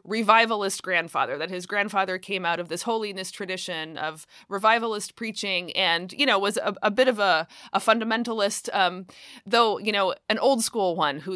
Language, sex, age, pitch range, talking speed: English, female, 20-39, 180-225 Hz, 180 wpm